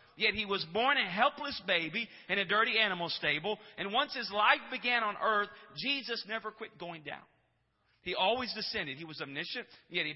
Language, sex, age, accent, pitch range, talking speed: English, male, 40-59, American, 170-235 Hz, 190 wpm